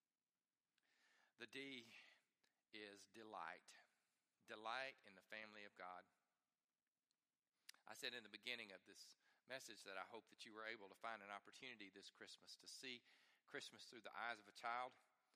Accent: American